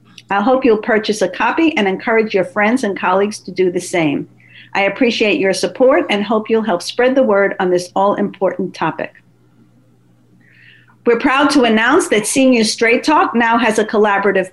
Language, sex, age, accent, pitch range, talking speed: English, female, 50-69, American, 195-240 Hz, 180 wpm